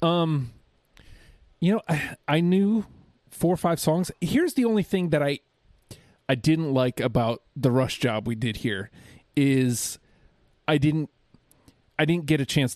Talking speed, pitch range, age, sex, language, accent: 160 wpm, 120-145 Hz, 30-49, male, English, American